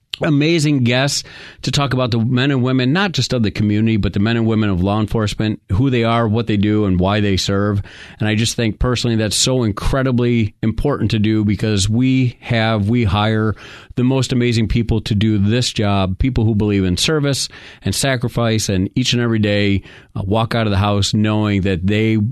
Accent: American